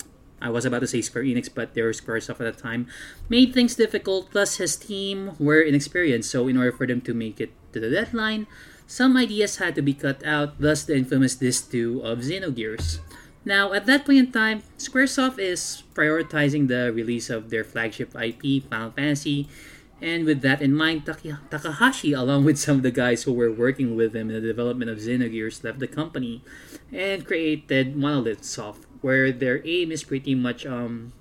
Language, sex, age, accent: Filipino, male, 20-39, native